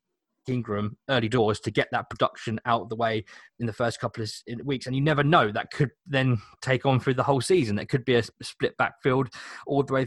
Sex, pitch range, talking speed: male, 110-140 Hz, 230 wpm